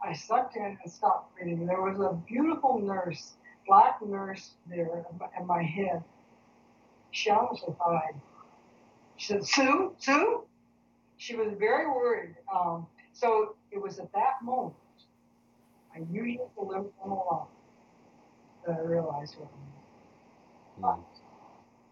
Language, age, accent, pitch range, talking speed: English, 60-79, American, 170-250 Hz, 130 wpm